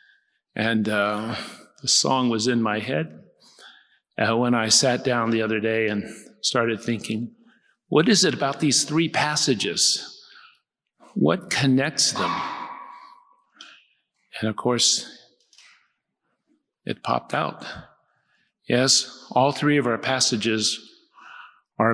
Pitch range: 115-145 Hz